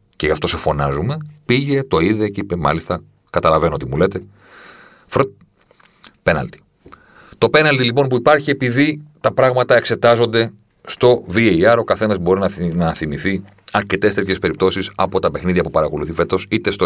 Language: Greek